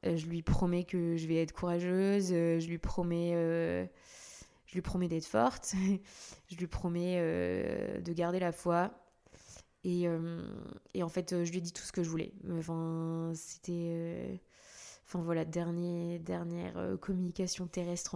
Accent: French